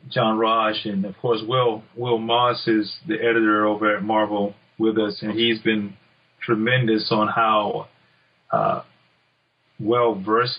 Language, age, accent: English, 30-49, American